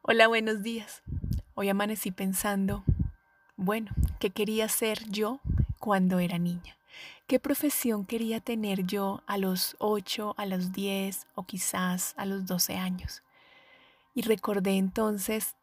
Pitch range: 190-225 Hz